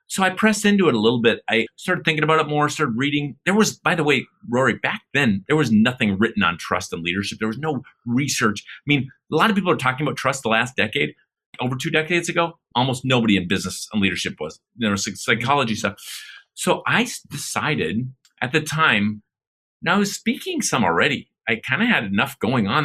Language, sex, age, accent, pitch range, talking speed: English, male, 30-49, American, 115-160 Hz, 215 wpm